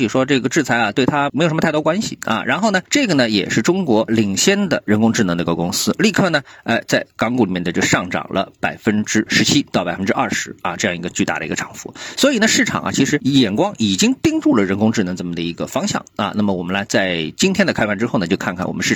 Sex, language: male, Chinese